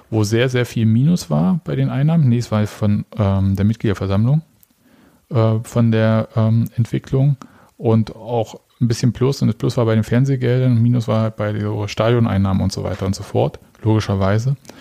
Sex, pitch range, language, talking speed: male, 105-120 Hz, German, 185 wpm